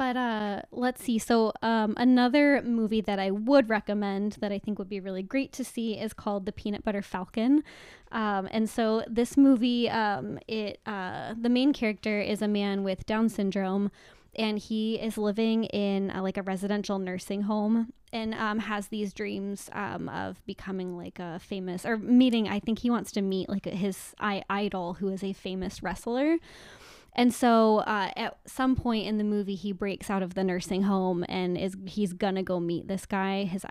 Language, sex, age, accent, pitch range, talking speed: English, female, 10-29, American, 195-220 Hz, 190 wpm